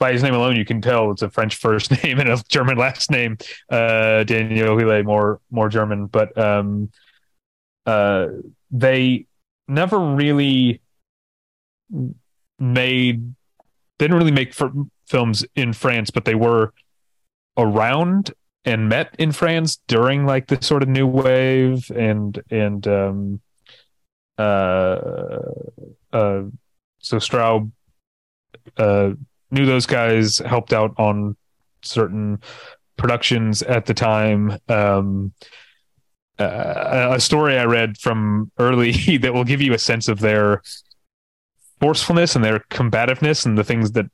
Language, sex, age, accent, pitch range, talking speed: English, male, 30-49, American, 105-125 Hz, 130 wpm